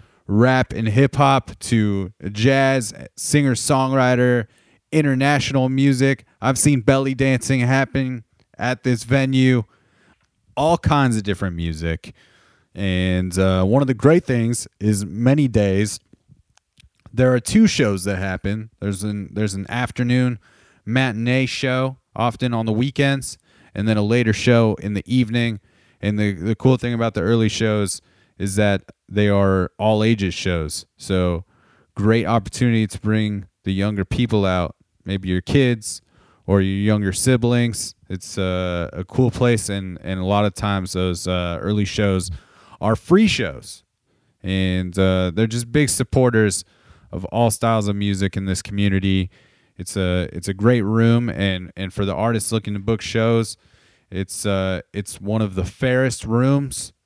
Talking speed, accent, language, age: 150 wpm, American, English, 30-49